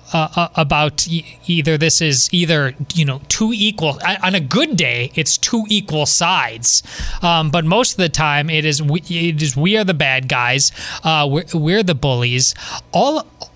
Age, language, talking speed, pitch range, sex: 20-39, English, 190 wpm, 140-165 Hz, male